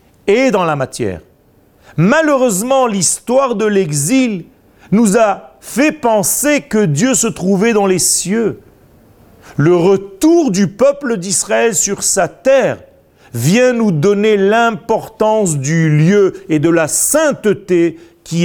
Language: French